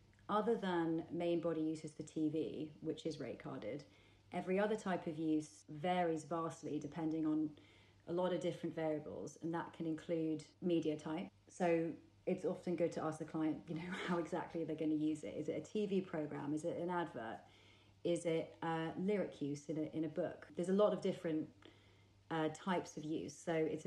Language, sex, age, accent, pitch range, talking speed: English, female, 30-49, British, 155-175 Hz, 200 wpm